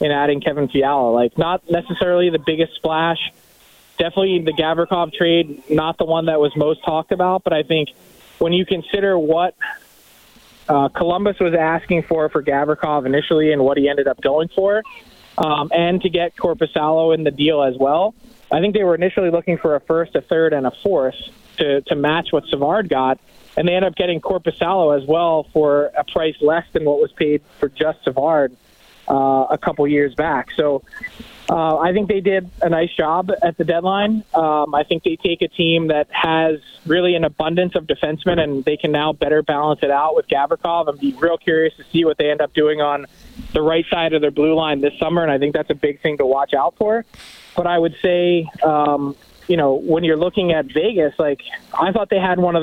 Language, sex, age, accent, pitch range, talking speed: English, male, 20-39, American, 150-175 Hz, 210 wpm